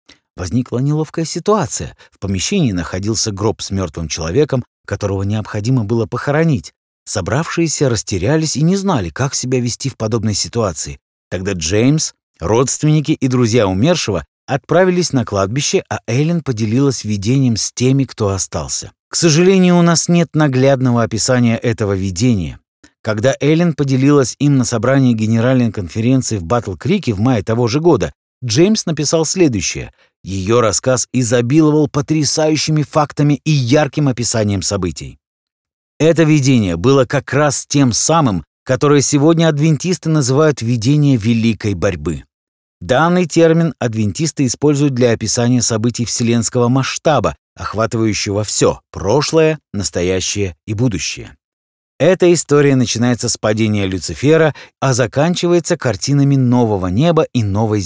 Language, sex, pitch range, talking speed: Russian, male, 105-150 Hz, 125 wpm